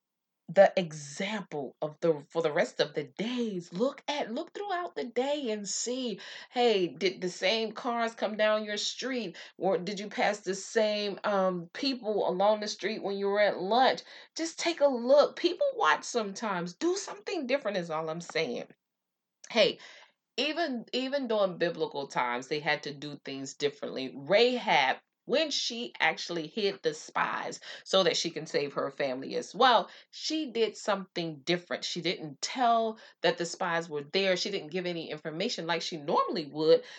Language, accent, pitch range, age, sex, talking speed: English, American, 160-235 Hz, 30-49, female, 170 wpm